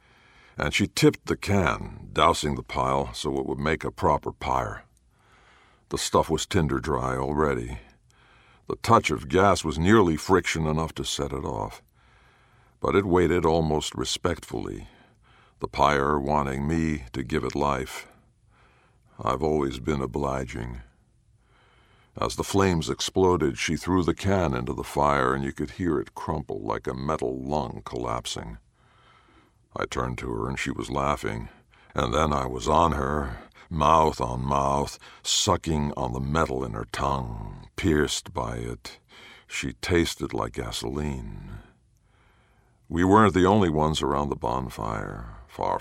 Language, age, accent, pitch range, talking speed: English, 60-79, American, 65-85 Hz, 145 wpm